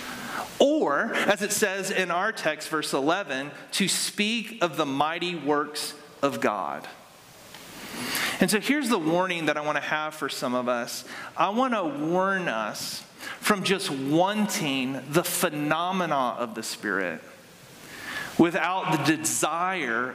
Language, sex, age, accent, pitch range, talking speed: English, male, 40-59, American, 140-195 Hz, 140 wpm